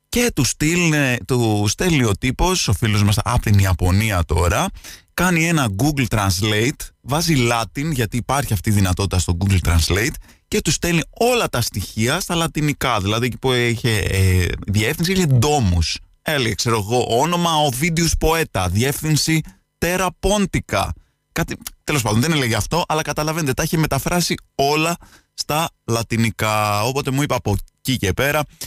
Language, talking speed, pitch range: Greek, 150 wpm, 95-135 Hz